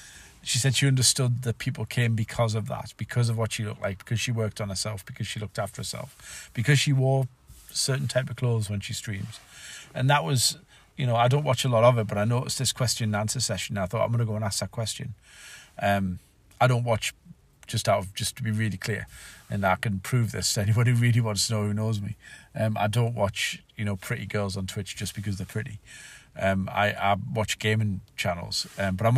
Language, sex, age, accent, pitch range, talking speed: English, male, 40-59, British, 100-120 Hz, 240 wpm